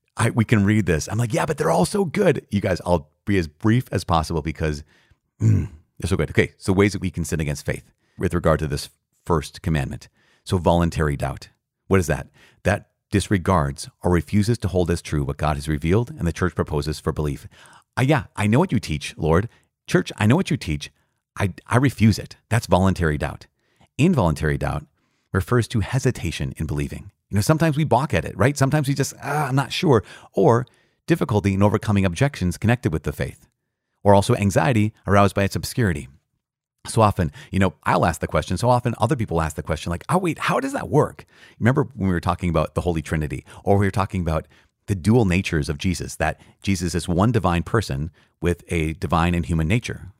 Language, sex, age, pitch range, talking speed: English, male, 40-59, 80-115 Hz, 210 wpm